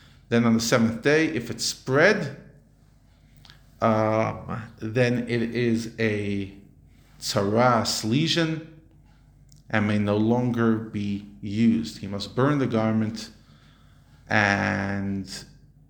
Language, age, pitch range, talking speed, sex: English, 40-59, 100-125 Hz, 100 wpm, male